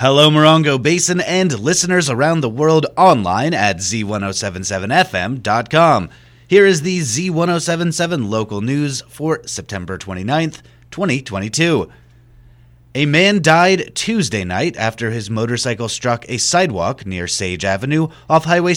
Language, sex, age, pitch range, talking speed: English, male, 30-49, 100-150 Hz, 120 wpm